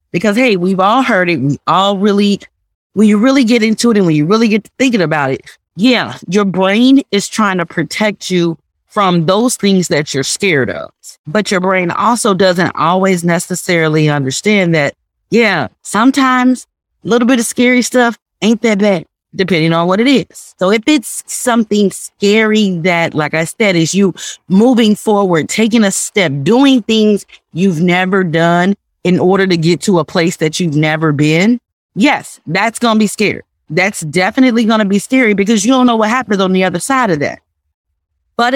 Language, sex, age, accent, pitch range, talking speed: English, female, 30-49, American, 170-225 Hz, 190 wpm